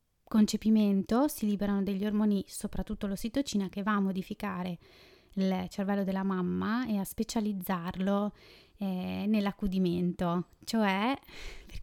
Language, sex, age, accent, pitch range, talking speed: Italian, female, 20-39, native, 185-205 Hz, 110 wpm